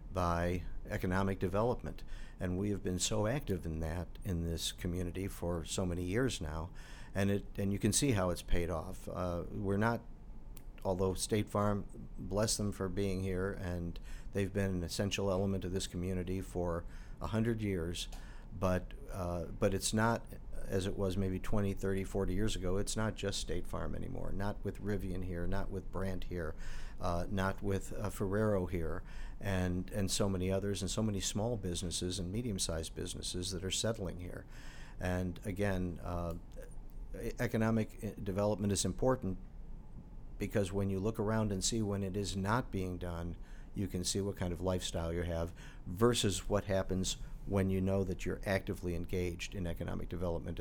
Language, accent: English, American